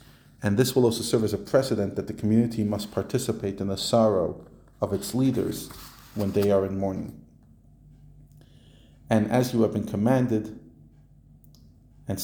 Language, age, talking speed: English, 40-59, 150 wpm